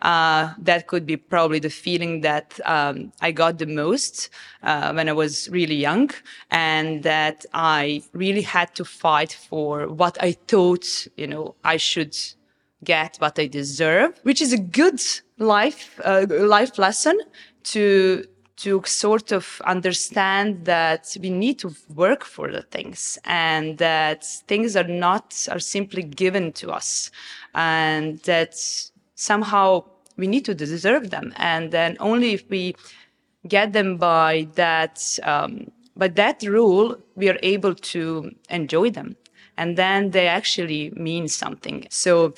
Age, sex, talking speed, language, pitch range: 20-39, female, 145 wpm, English, 165-205 Hz